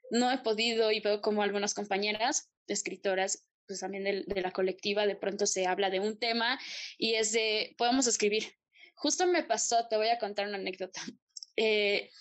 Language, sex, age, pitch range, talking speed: Spanish, female, 10-29, 205-275 Hz, 180 wpm